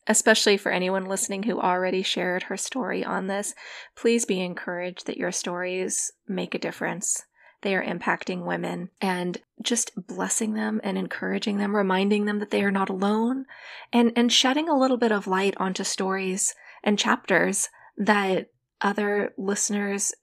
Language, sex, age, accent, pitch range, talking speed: English, female, 20-39, American, 190-230 Hz, 155 wpm